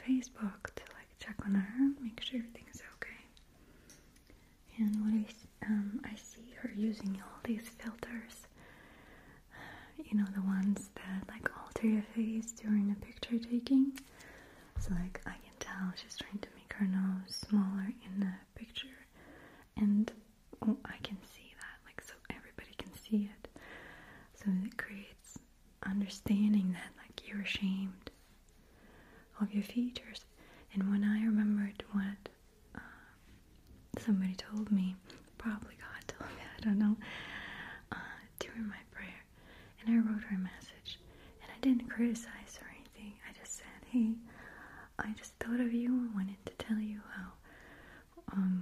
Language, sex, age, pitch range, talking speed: English, female, 20-39, 200-230 Hz, 150 wpm